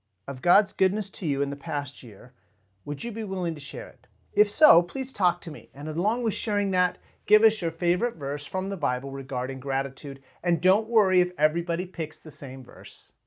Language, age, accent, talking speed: English, 40-59, American, 210 wpm